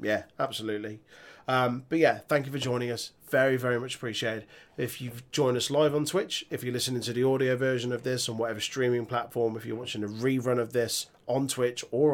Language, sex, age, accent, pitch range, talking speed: English, male, 30-49, British, 115-140 Hz, 215 wpm